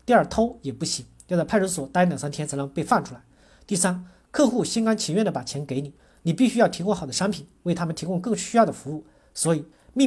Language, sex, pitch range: Chinese, male, 155-215 Hz